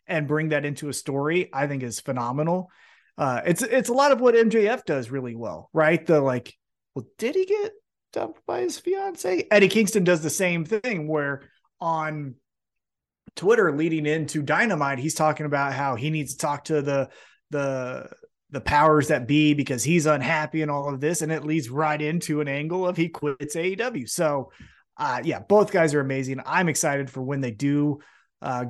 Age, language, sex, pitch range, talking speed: 30-49, English, male, 140-185 Hz, 190 wpm